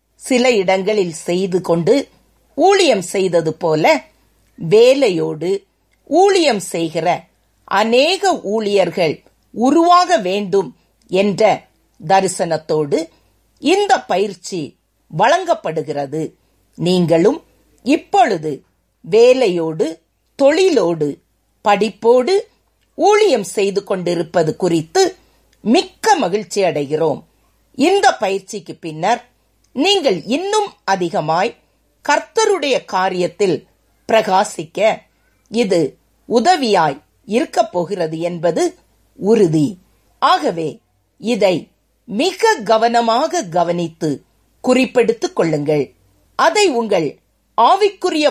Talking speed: 70 wpm